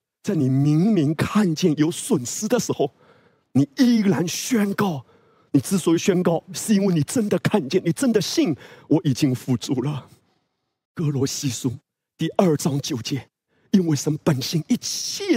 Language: Chinese